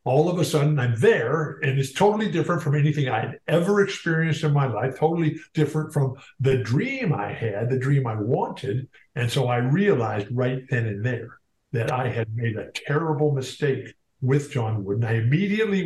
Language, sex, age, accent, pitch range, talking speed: English, male, 50-69, American, 120-155 Hz, 190 wpm